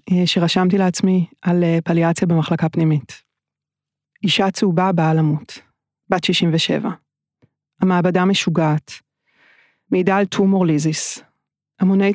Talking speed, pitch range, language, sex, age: 90 wpm, 165-195 Hz, Hebrew, female, 30-49